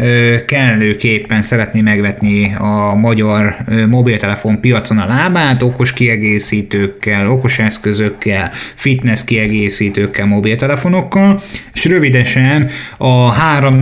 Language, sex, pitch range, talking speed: Hungarian, male, 110-135 Hz, 90 wpm